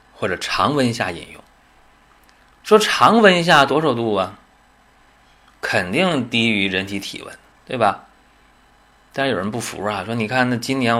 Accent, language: native, Chinese